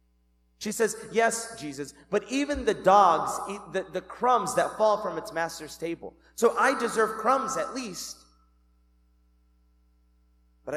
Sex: male